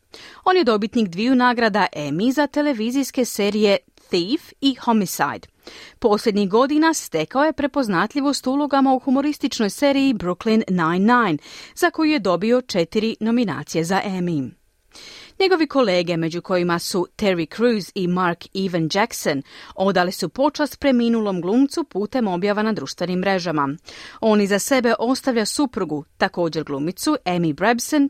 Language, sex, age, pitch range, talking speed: Croatian, female, 40-59, 175-260 Hz, 130 wpm